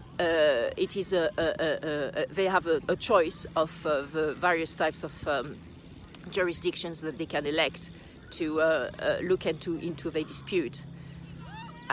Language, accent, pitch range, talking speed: English, French, 165-220 Hz, 170 wpm